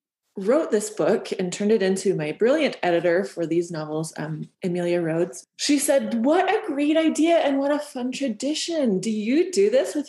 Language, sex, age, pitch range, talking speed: English, female, 20-39, 180-235 Hz, 190 wpm